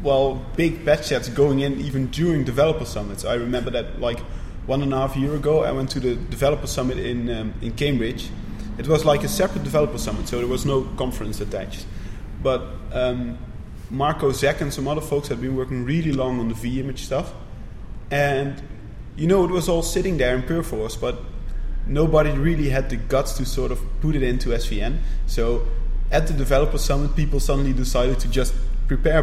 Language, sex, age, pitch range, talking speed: English, male, 20-39, 115-140 Hz, 195 wpm